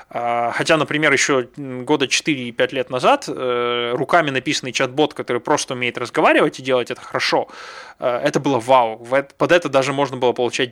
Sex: male